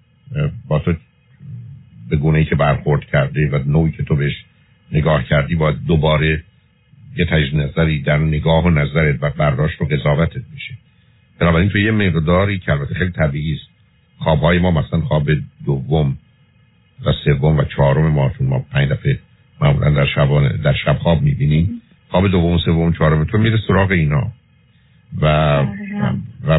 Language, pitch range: Persian, 75-125 Hz